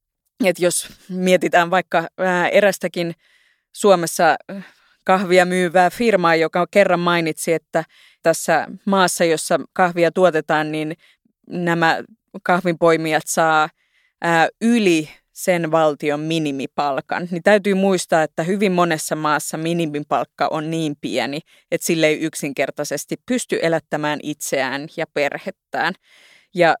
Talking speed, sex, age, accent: 105 wpm, female, 30-49, native